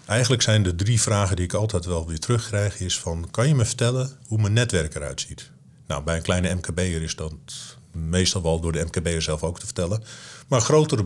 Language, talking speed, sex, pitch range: Dutch, 215 wpm, male, 90-120 Hz